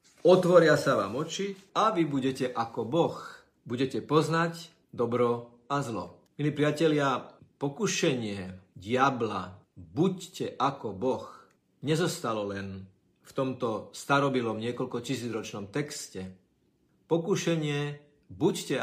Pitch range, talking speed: 105-150 Hz, 95 wpm